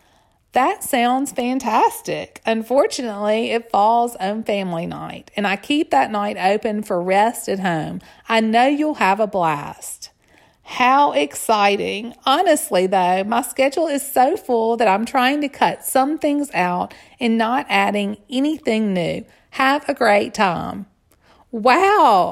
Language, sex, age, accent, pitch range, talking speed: English, female, 40-59, American, 205-270 Hz, 140 wpm